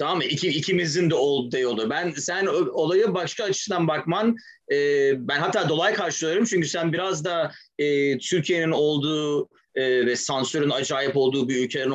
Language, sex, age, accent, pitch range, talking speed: Turkish, male, 30-49, native, 140-185 Hz, 155 wpm